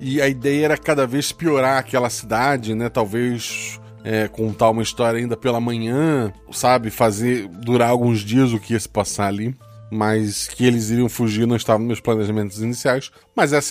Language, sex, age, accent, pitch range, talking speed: Portuguese, male, 20-39, Brazilian, 115-145 Hz, 185 wpm